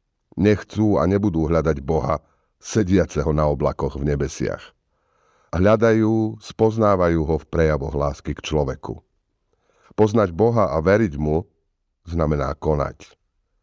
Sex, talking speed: male, 110 wpm